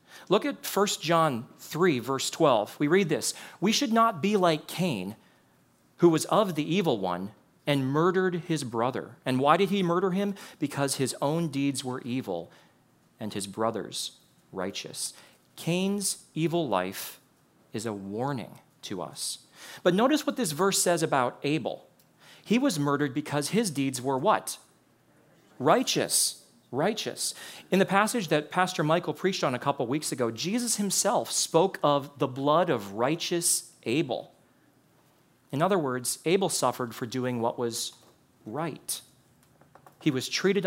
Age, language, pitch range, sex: 40-59, English, 125-185 Hz, male